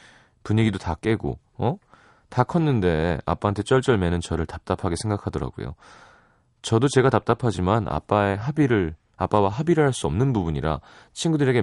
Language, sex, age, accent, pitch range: Korean, male, 30-49, native, 85-130 Hz